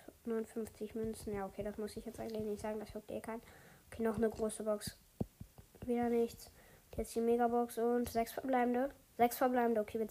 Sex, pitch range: female, 210-245 Hz